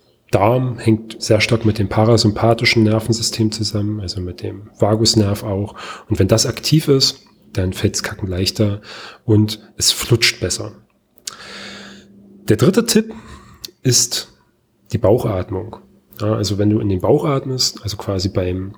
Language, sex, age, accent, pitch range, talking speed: German, male, 30-49, German, 105-125 Hz, 135 wpm